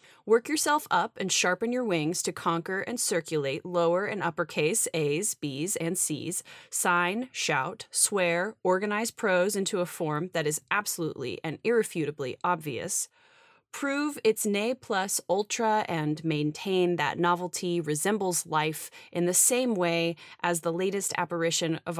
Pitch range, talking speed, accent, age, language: 155-200 Hz, 140 wpm, American, 20-39, English